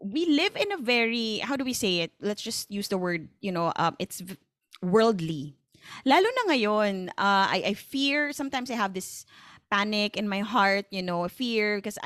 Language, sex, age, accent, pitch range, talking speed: Filipino, female, 20-39, native, 190-255 Hz, 195 wpm